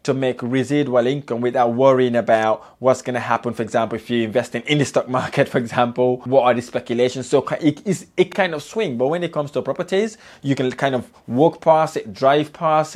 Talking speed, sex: 220 wpm, male